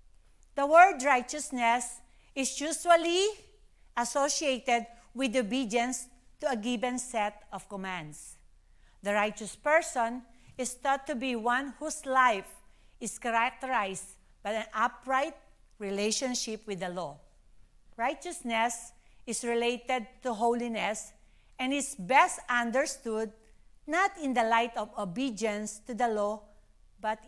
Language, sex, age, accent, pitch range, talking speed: English, female, 40-59, Filipino, 210-260 Hz, 115 wpm